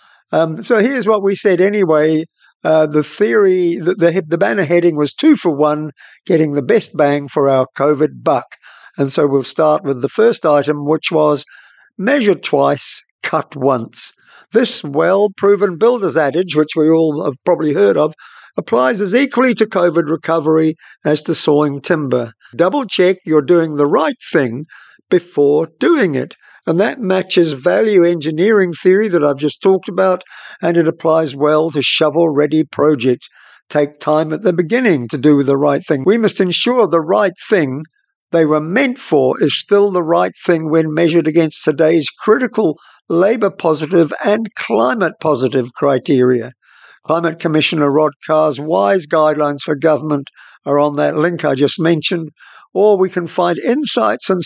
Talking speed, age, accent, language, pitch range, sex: 160 wpm, 60-79, British, English, 150-185 Hz, male